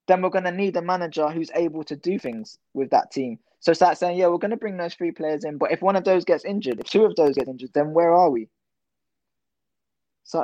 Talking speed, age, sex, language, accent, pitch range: 255 wpm, 20-39, male, English, British, 130-170 Hz